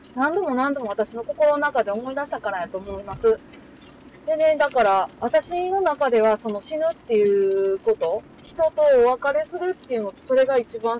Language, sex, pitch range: Japanese, female, 185-290 Hz